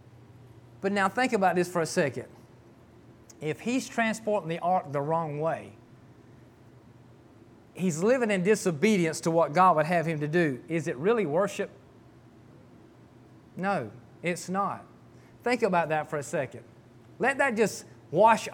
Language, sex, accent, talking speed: English, male, American, 145 wpm